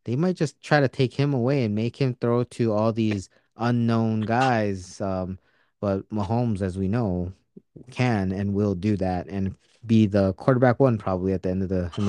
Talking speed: 195 wpm